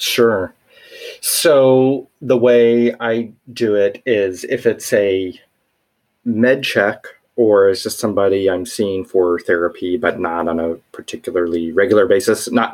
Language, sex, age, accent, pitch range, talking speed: English, male, 30-49, American, 90-120 Hz, 135 wpm